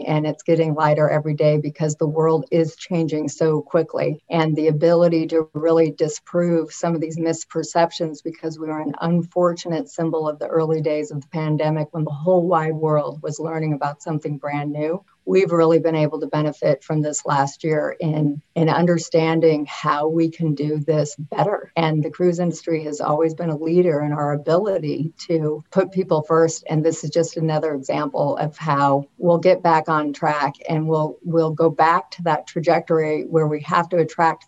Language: English